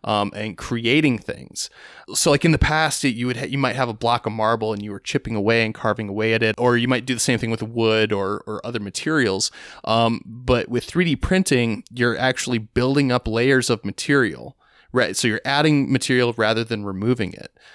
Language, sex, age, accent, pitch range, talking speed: English, male, 20-39, American, 110-135 Hz, 215 wpm